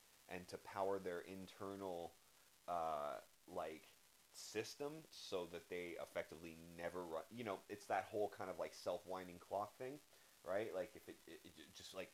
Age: 30-49